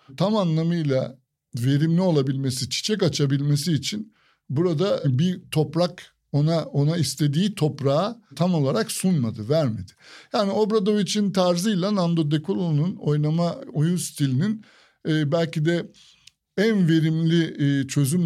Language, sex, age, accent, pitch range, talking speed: Turkish, male, 60-79, native, 140-180 Hz, 100 wpm